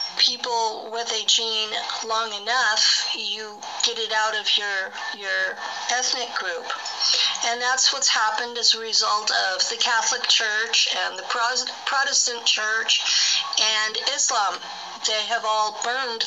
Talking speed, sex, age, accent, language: 135 wpm, female, 50-69, American, English